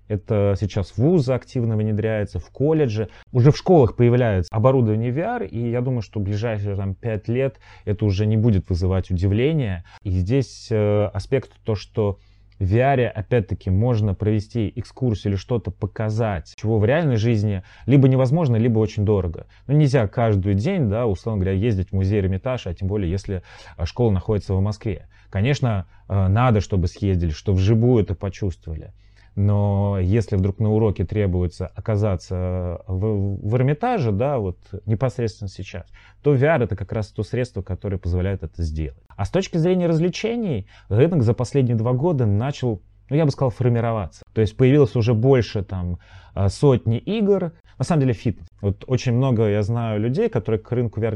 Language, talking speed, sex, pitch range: Russian, 170 wpm, male, 100-125 Hz